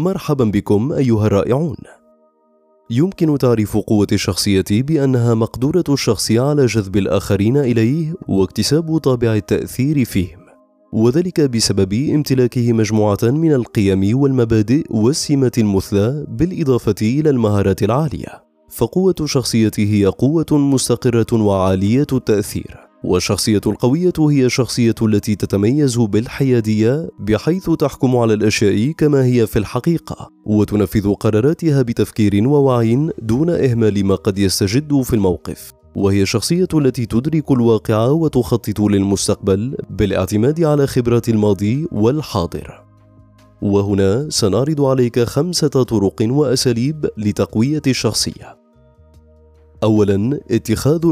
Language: Arabic